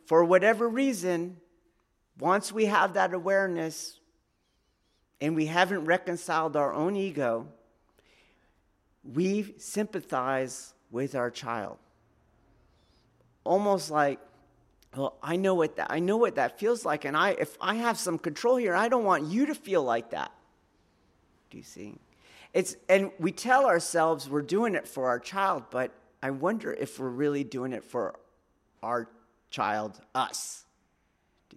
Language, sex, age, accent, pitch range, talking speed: English, male, 40-59, American, 135-195 Hz, 145 wpm